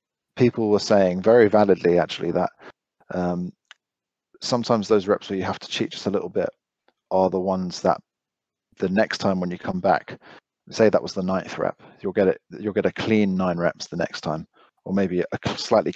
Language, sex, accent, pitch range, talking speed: English, male, British, 90-105 Hz, 200 wpm